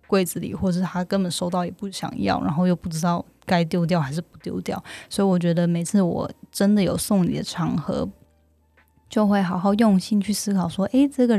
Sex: female